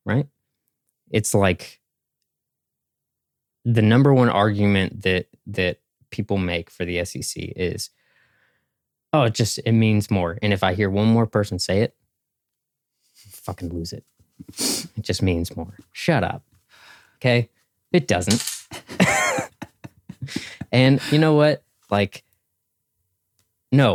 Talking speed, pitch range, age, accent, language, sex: 125 wpm, 95-120 Hz, 20-39, American, English, male